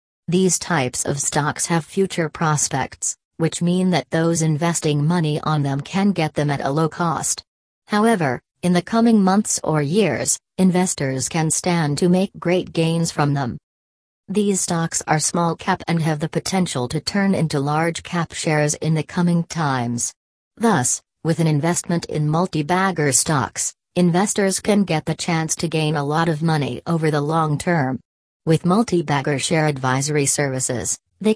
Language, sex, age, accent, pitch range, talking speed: English, female, 40-59, American, 145-175 Hz, 160 wpm